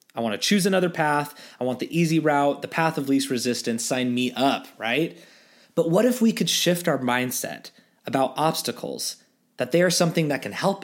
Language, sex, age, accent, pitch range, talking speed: English, male, 20-39, American, 125-175 Hz, 205 wpm